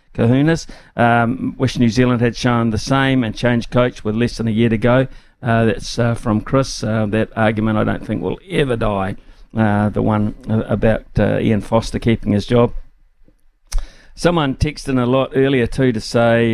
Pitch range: 110-140 Hz